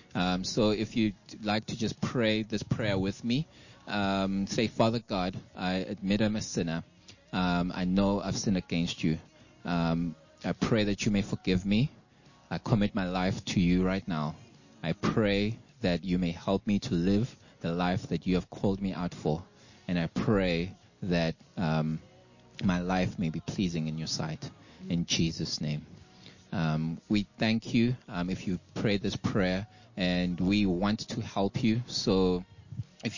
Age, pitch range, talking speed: 20-39, 90-110 Hz, 175 wpm